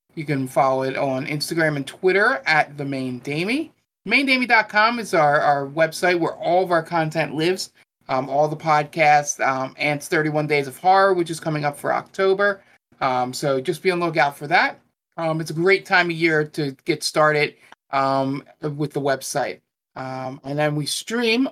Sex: male